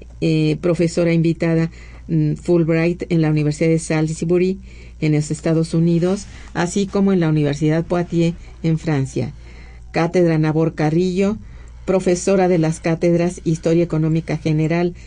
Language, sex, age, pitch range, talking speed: Spanish, female, 50-69, 155-185 Hz, 125 wpm